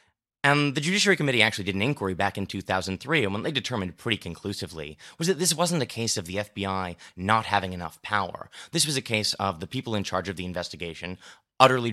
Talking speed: 215 wpm